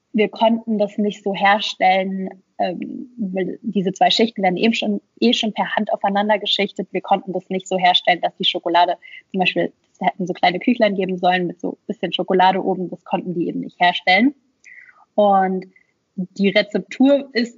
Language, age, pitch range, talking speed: German, 20-39, 190-230 Hz, 180 wpm